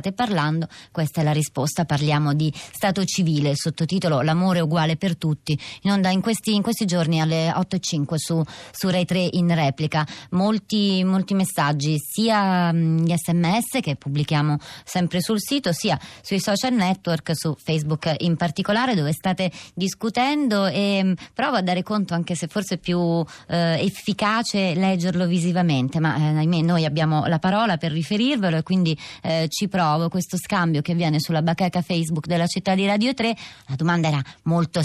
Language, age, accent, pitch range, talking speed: Italian, 30-49, native, 160-200 Hz, 165 wpm